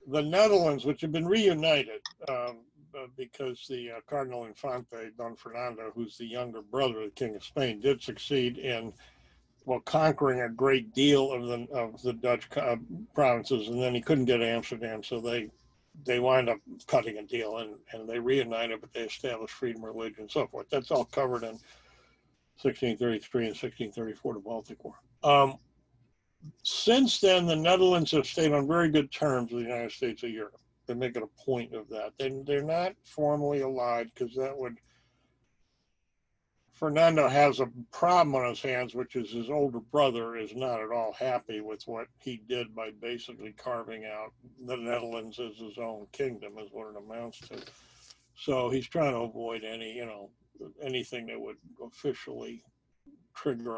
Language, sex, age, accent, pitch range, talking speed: English, male, 60-79, American, 115-135 Hz, 175 wpm